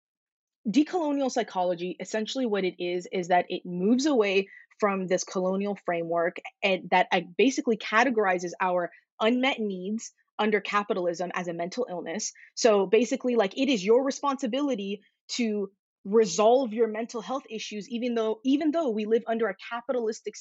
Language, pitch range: English, 195-230 Hz